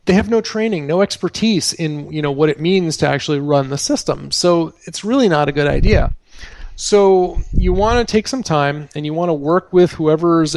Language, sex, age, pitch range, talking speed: English, male, 40-59, 135-165 Hz, 215 wpm